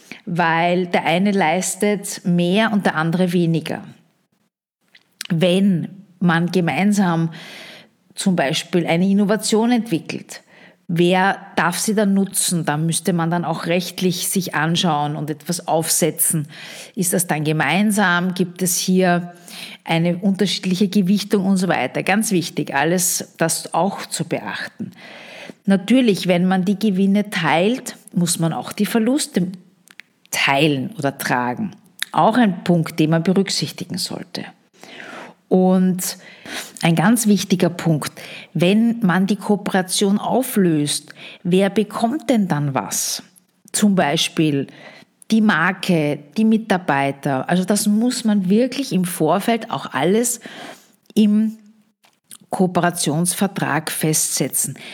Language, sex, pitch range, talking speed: German, female, 170-210 Hz, 120 wpm